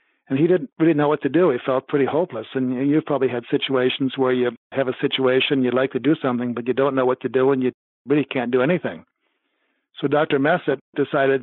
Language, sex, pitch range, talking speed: English, male, 125-145 Hz, 230 wpm